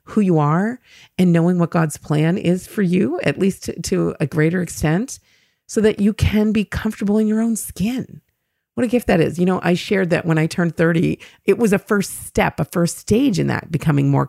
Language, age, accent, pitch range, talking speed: English, 40-59, American, 160-205 Hz, 225 wpm